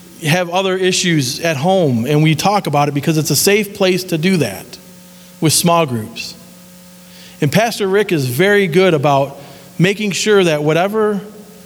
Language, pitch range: English, 140-180 Hz